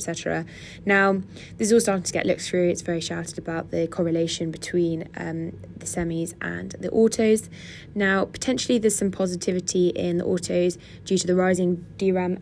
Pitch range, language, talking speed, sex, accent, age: 170-190 Hz, English, 180 wpm, female, British, 20-39